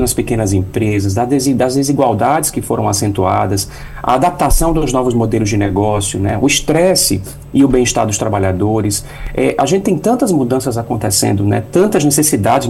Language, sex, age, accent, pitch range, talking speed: Portuguese, male, 40-59, Brazilian, 105-145 Hz, 150 wpm